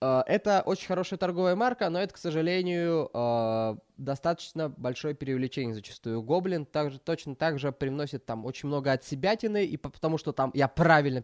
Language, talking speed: Russian, 155 wpm